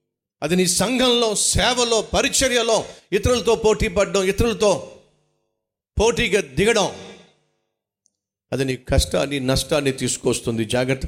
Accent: native